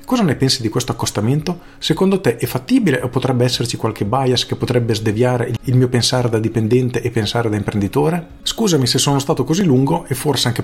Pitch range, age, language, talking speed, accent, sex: 110-135 Hz, 40-59, Italian, 205 wpm, native, male